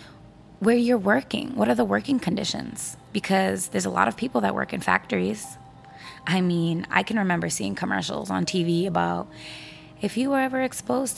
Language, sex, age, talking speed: English, female, 20-39, 175 wpm